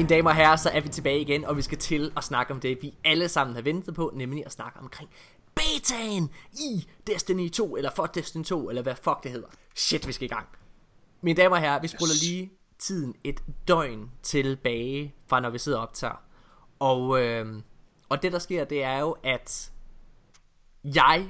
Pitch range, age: 130-165 Hz, 20-39